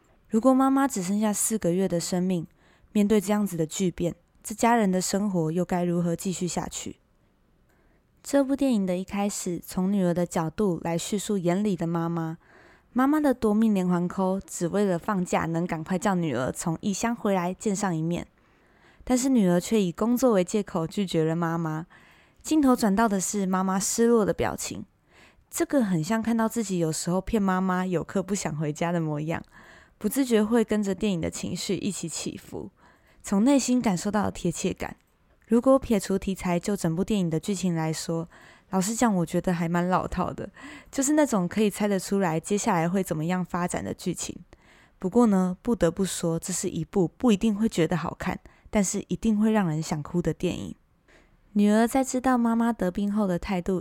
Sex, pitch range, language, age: female, 175-215 Hz, Chinese, 20-39